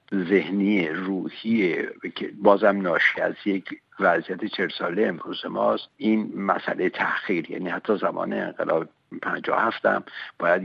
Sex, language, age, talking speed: male, Persian, 60-79, 120 wpm